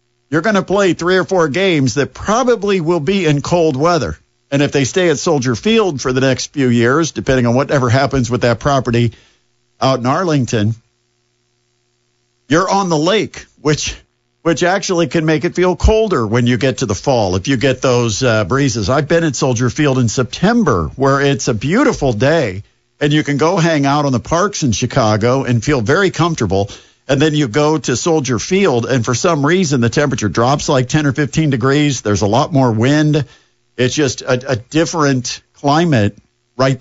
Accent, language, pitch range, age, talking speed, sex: American, English, 120-160 Hz, 50-69, 195 wpm, male